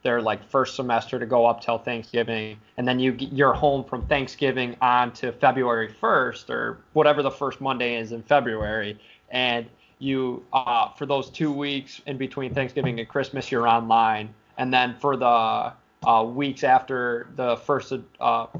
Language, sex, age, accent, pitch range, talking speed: English, male, 20-39, American, 115-145 Hz, 170 wpm